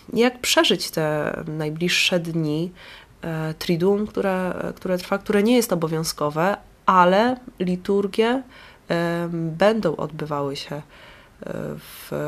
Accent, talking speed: native, 95 wpm